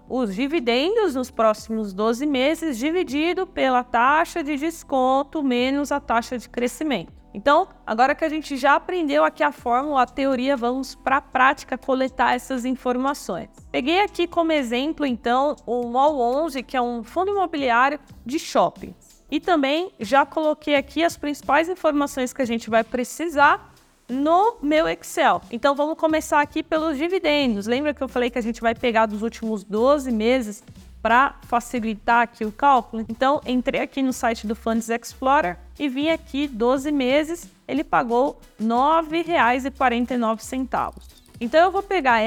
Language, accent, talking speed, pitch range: Portuguese, Brazilian, 160 wpm, 245-310 Hz